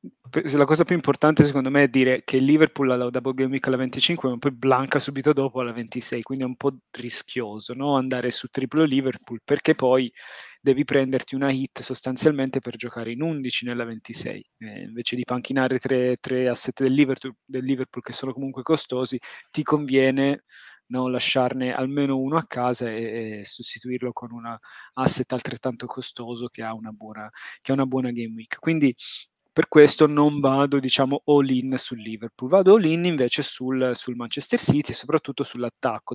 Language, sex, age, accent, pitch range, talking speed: Italian, male, 20-39, native, 120-140 Hz, 165 wpm